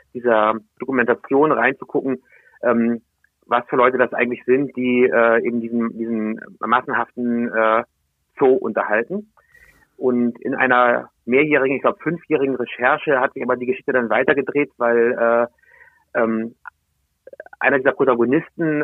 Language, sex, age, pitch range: German, male, 30-49, 120-135 Hz